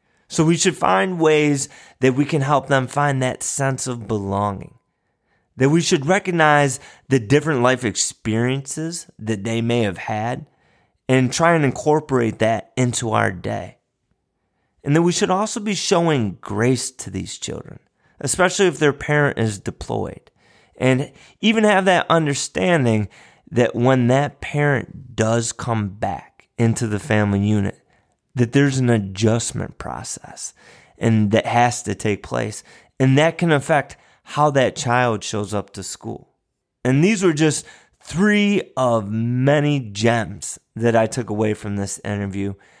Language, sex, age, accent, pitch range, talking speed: English, male, 30-49, American, 110-150 Hz, 150 wpm